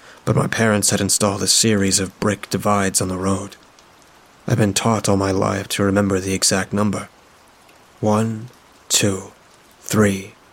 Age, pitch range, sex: 30-49, 95-105 Hz, male